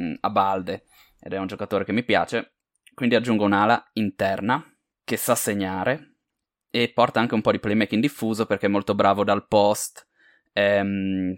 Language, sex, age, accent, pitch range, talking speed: Italian, male, 20-39, native, 100-115 Hz, 165 wpm